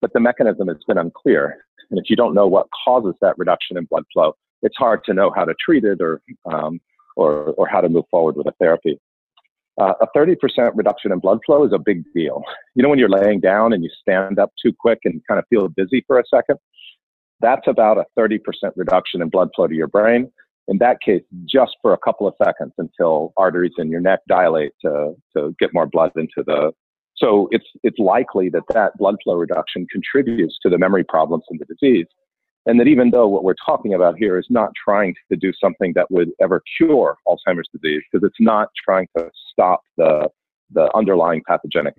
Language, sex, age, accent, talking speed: English, male, 40-59, American, 215 wpm